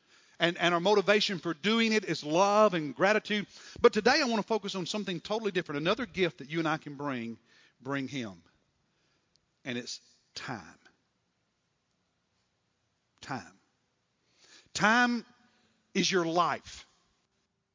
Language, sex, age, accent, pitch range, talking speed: English, male, 50-69, American, 155-205 Hz, 130 wpm